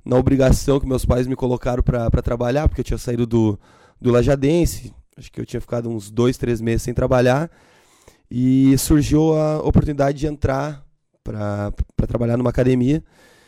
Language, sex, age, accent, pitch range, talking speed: Portuguese, male, 20-39, Brazilian, 120-150 Hz, 165 wpm